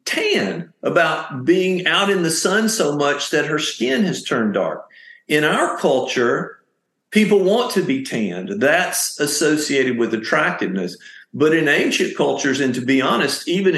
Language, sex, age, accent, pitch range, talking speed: English, male, 50-69, American, 135-190 Hz, 155 wpm